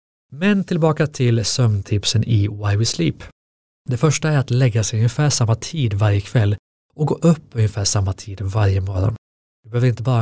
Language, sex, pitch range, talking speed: Swedish, male, 100-120 Hz, 180 wpm